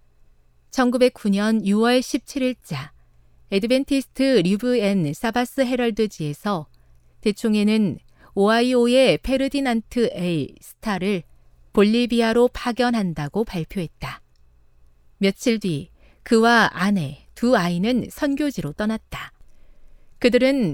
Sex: female